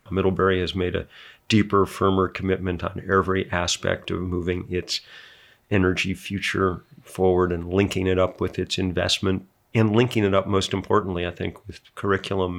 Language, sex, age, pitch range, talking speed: English, male, 50-69, 95-115 Hz, 155 wpm